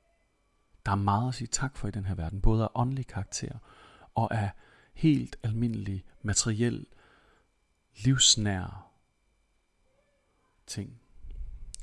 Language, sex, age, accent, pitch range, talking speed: Danish, male, 40-59, native, 95-120 Hz, 110 wpm